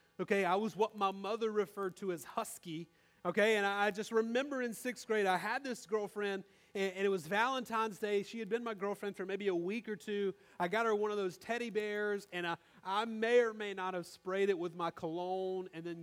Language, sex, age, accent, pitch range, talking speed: English, male, 30-49, American, 175-225 Hz, 235 wpm